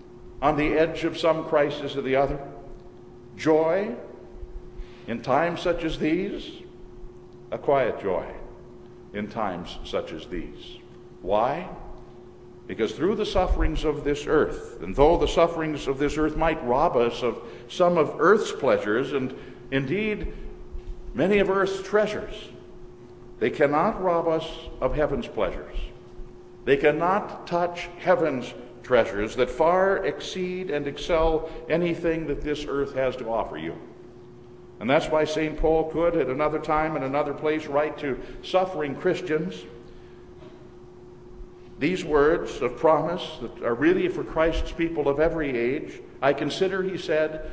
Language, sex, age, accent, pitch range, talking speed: English, male, 60-79, American, 130-175 Hz, 140 wpm